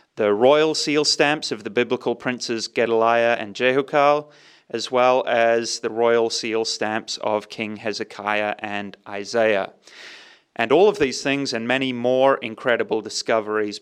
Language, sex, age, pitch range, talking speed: English, male, 30-49, 110-140 Hz, 145 wpm